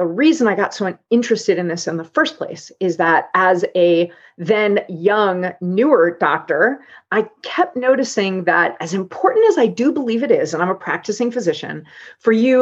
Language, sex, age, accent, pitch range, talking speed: English, female, 40-59, American, 175-245 Hz, 185 wpm